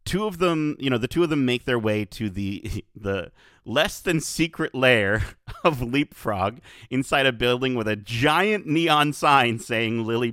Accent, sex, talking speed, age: American, male, 180 wpm, 30-49